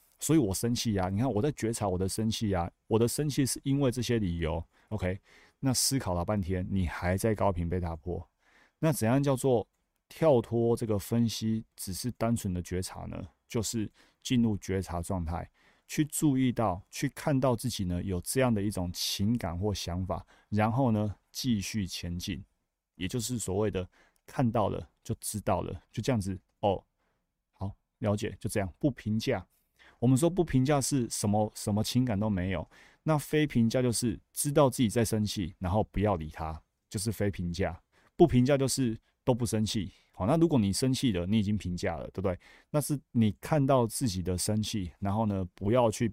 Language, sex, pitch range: Chinese, male, 95-120 Hz